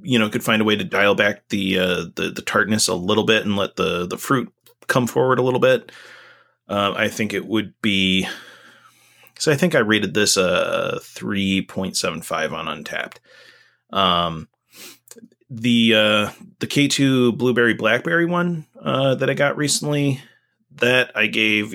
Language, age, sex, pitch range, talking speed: English, 30-49, male, 100-120 Hz, 175 wpm